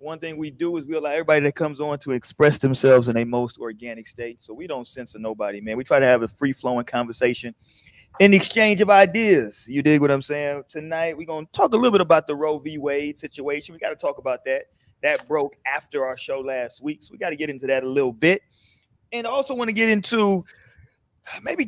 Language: English